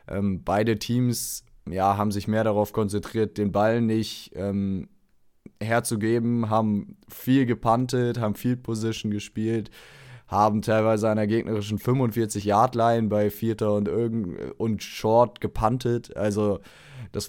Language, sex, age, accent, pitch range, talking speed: German, male, 20-39, German, 100-115 Hz, 120 wpm